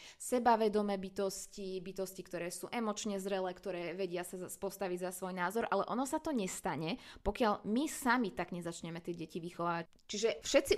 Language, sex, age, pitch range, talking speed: Slovak, female, 20-39, 180-215 Hz, 160 wpm